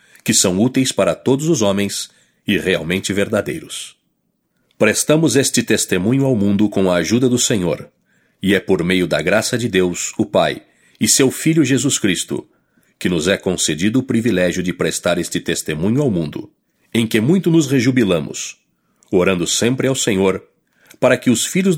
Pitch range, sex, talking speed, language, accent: 100-130 Hz, male, 165 wpm, English, Brazilian